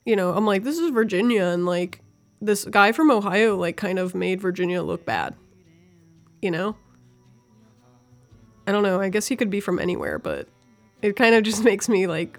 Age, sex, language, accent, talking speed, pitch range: 20-39, female, English, American, 195 wpm, 185-215 Hz